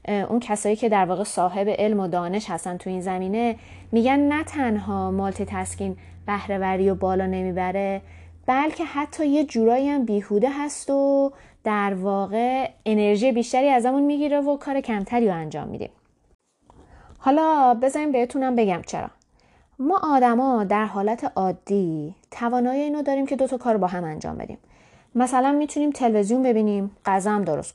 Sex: female